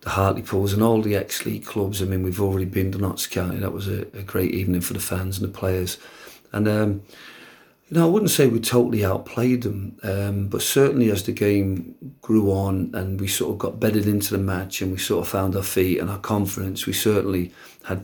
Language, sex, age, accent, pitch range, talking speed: English, male, 40-59, British, 95-110 Hz, 230 wpm